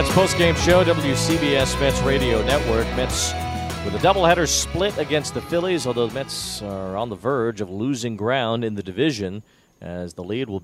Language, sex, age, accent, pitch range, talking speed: English, male, 40-59, American, 95-135 Hz, 180 wpm